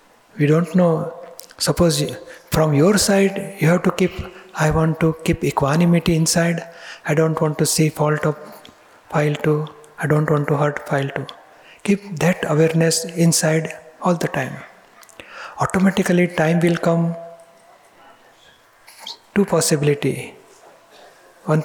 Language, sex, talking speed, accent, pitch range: Gujarati, male, 135 wpm, native, 155-170 Hz